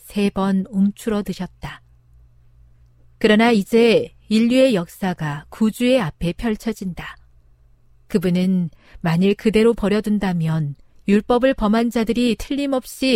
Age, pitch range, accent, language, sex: 40-59, 160-220 Hz, native, Korean, female